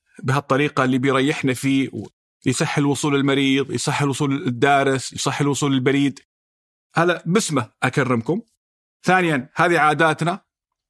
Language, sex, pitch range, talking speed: Arabic, male, 130-160 Hz, 105 wpm